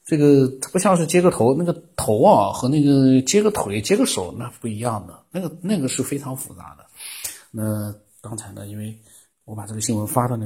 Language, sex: Chinese, male